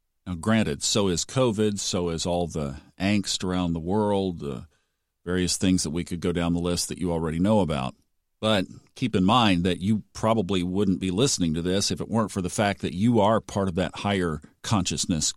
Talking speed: 210 wpm